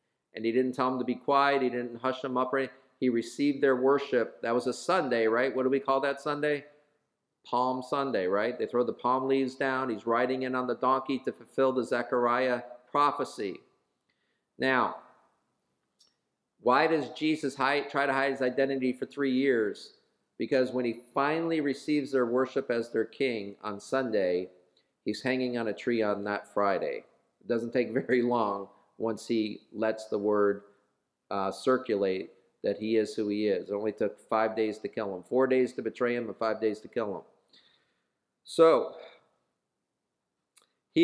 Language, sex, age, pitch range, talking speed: English, male, 40-59, 120-145 Hz, 175 wpm